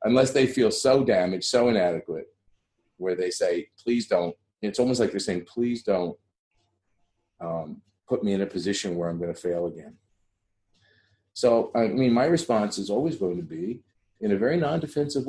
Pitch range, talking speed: 100-150 Hz, 175 wpm